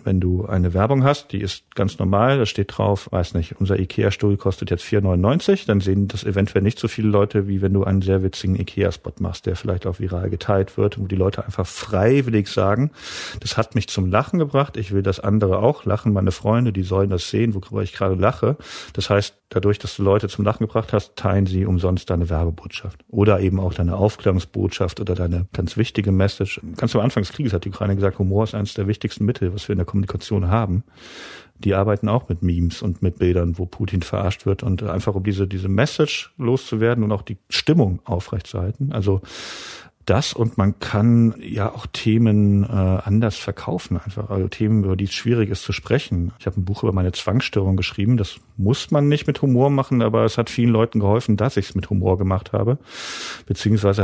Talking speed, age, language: 210 wpm, 40-59, German